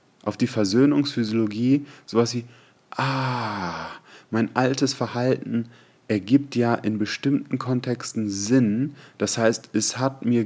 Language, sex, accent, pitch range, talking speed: German, male, German, 105-125 Hz, 115 wpm